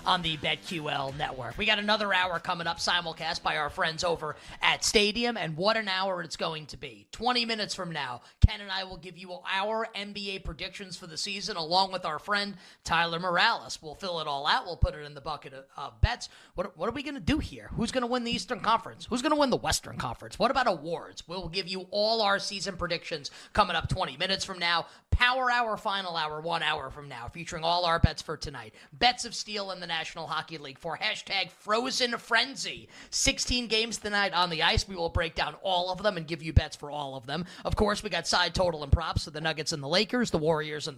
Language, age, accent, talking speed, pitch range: English, 20-39, American, 235 wpm, 155-205 Hz